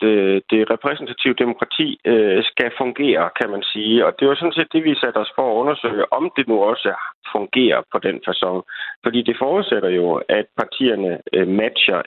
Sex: male